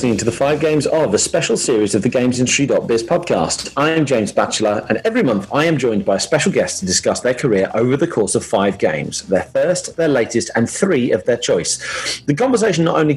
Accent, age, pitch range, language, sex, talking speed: British, 40-59, 115-155 Hz, English, male, 230 wpm